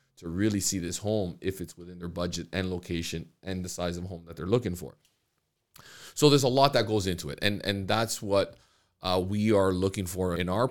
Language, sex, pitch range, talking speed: English, male, 85-110 Hz, 230 wpm